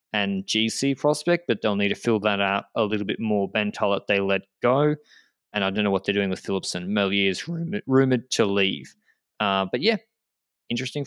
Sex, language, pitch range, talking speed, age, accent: male, English, 105-140 Hz, 200 wpm, 20-39, Australian